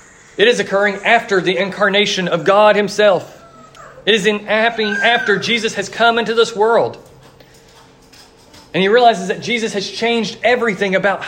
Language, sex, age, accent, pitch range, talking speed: English, male, 40-59, American, 185-220 Hz, 150 wpm